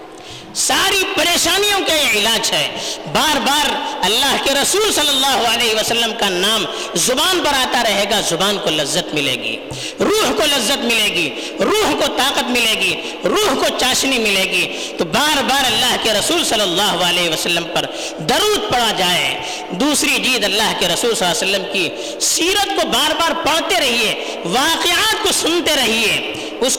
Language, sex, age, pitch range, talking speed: Urdu, female, 50-69, 215-335 Hz, 170 wpm